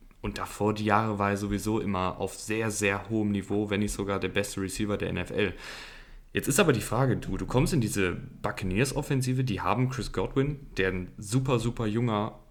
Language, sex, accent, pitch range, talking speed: German, male, German, 100-120 Hz, 195 wpm